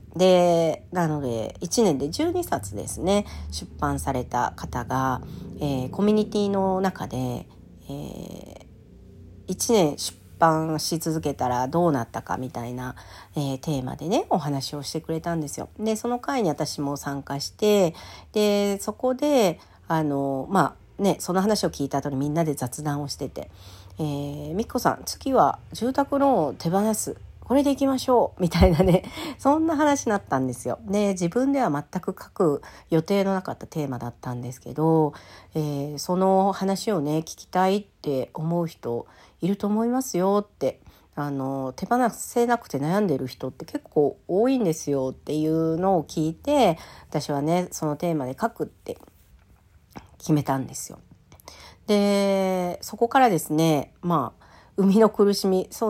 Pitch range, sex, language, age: 140-205 Hz, female, Japanese, 40-59